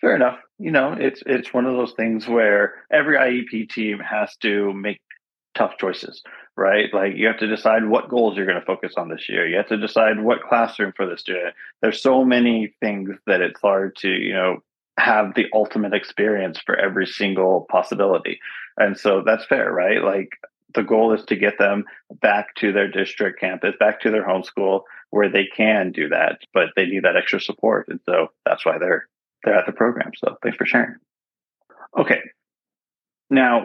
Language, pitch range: English, 100-120 Hz